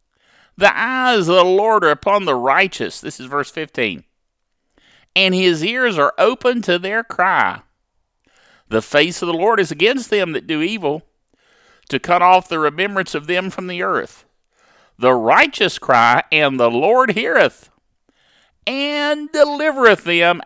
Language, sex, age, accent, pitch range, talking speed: English, male, 50-69, American, 150-215 Hz, 155 wpm